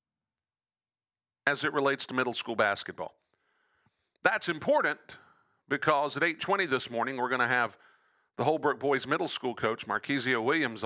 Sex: male